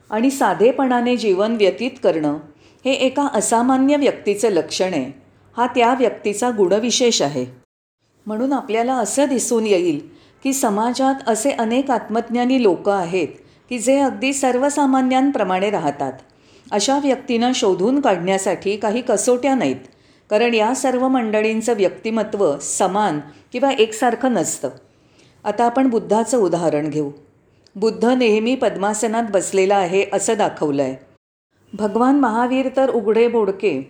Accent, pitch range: native, 190-250 Hz